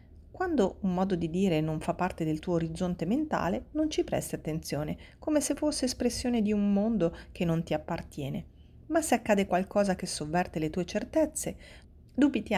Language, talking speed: Italian, 175 wpm